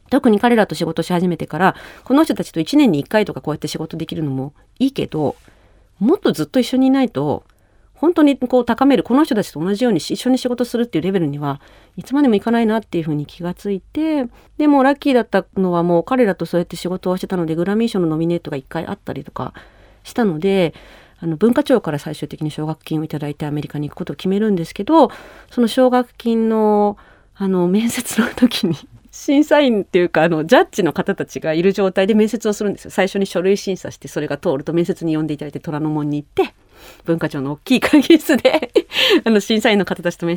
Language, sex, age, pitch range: Japanese, female, 40-59, 160-230 Hz